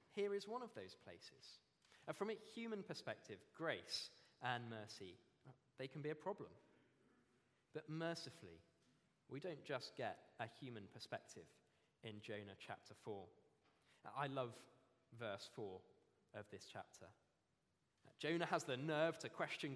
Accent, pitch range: British, 115-170 Hz